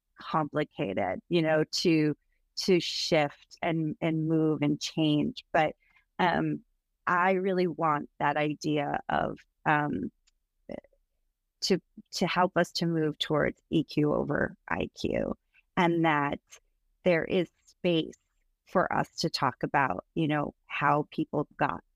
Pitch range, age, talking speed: 150-175 Hz, 30-49, 125 wpm